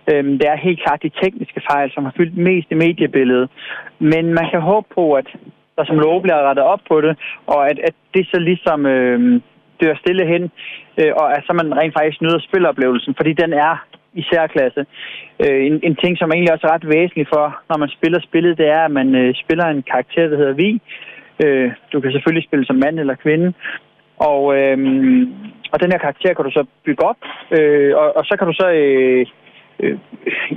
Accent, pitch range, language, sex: native, 145-180 Hz, Danish, male